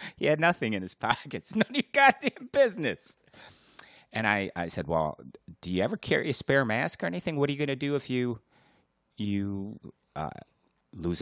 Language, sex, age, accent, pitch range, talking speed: English, male, 30-49, American, 85-110 Hz, 195 wpm